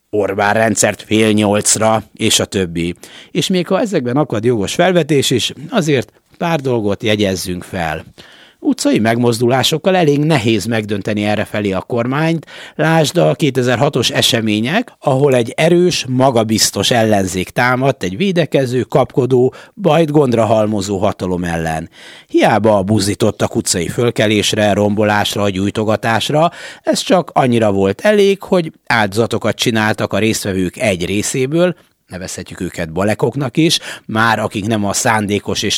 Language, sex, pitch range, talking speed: Hungarian, male, 100-140 Hz, 125 wpm